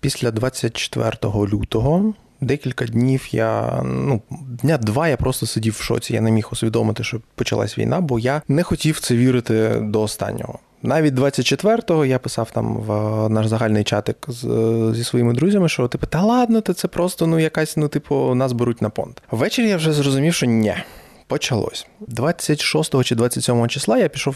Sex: male